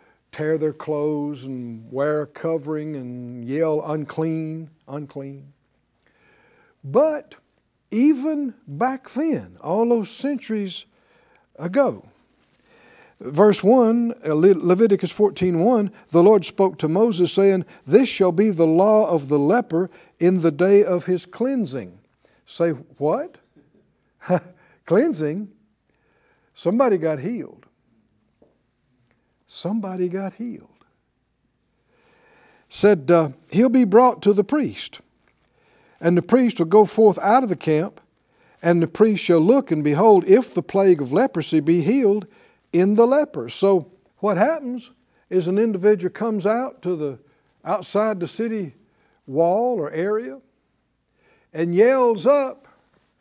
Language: English